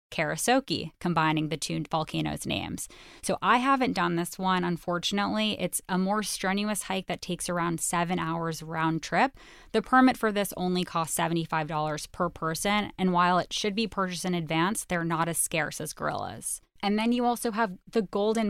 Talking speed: 180 wpm